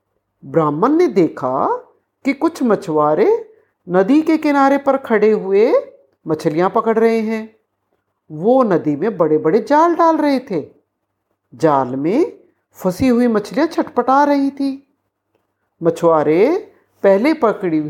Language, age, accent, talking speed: Hindi, 50-69, native, 120 wpm